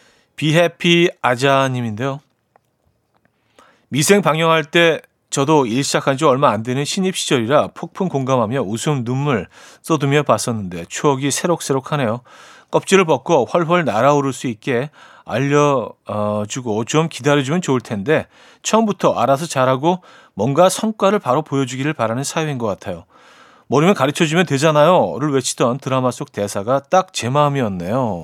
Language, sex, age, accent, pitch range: Korean, male, 40-59, native, 125-170 Hz